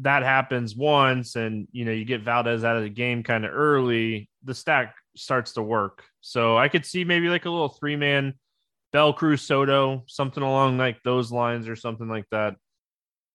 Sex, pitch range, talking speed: male, 120-145 Hz, 190 wpm